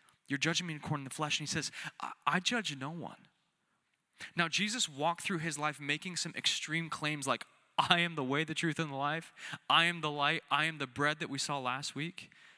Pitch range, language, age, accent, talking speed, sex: 125-165 Hz, English, 20-39, American, 230 wpm, male